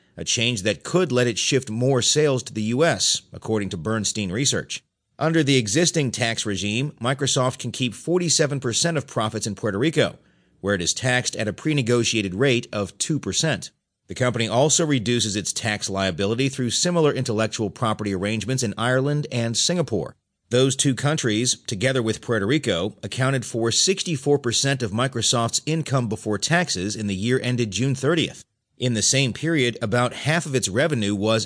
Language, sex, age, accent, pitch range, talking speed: English, male, 40-59, American, 110-135 Hz, 165 wpm